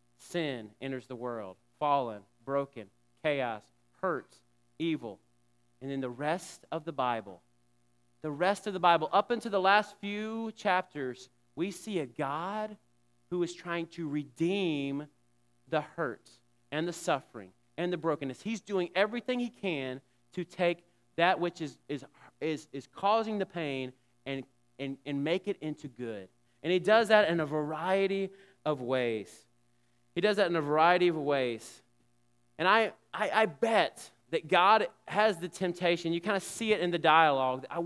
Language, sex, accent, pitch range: English, male, American, 120-175 Hz